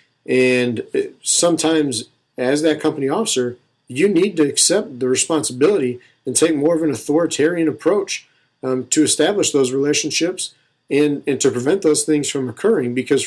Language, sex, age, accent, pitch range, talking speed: English, male, 50-69, American, 125-155 Hz, 150 wpm